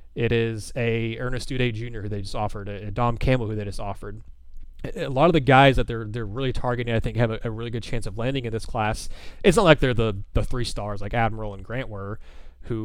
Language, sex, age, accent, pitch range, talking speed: English, male, 20-39, American, 100-125 Hz, 250 wpm